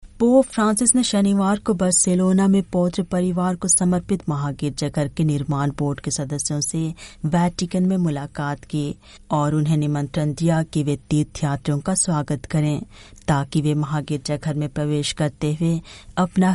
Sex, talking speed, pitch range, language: female, 150 wpm, 145-180 Hz, Hindi